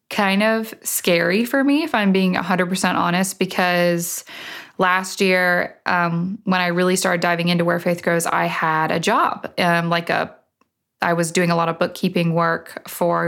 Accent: American